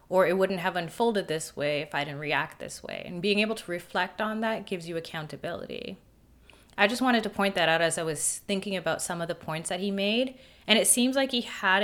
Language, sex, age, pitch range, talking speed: English, female, 20-39, 165-225 Hz, 245 wpm